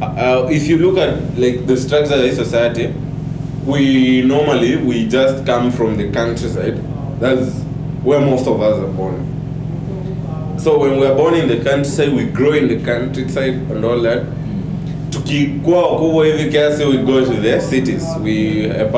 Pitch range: 120-155 Hz